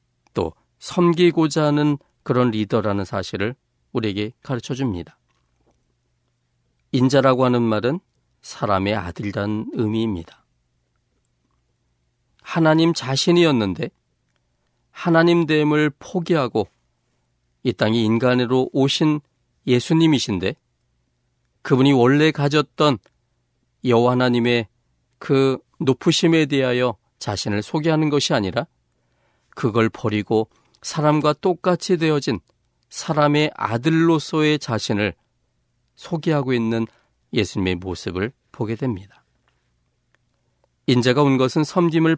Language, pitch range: Korean, 105-150 Hz